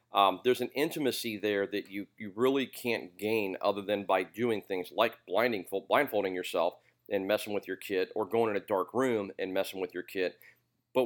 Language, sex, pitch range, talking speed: English, male, 95-120 Hz, 195 wpm